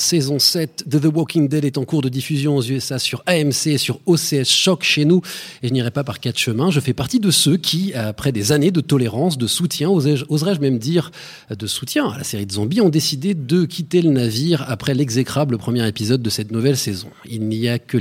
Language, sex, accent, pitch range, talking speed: French, male, French, 120-170 Hz, 230 wpm